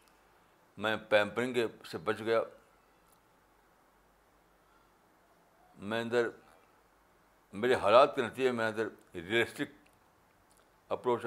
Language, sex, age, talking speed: Urdu, male, 60-79, 85 wpm